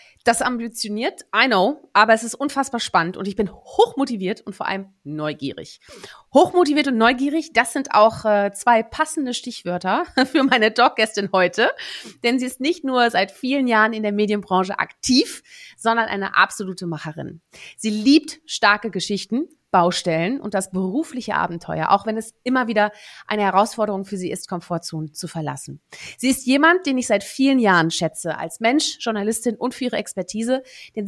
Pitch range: 195-255 Hz